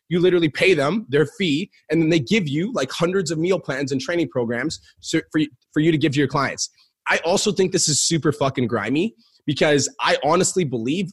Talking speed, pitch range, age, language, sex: 205 wpm, 135-170 Hz, 20-39, English, male